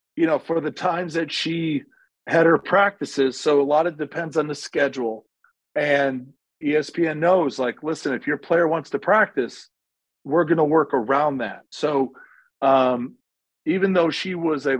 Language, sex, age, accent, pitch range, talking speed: English, male, 40-59, American, 135-160 Hz, 175 wpm